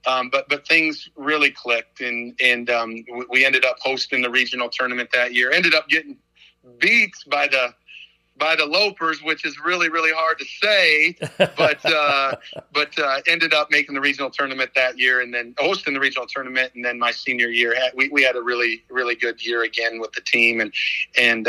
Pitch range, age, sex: 120-140 Hz, 40-59, male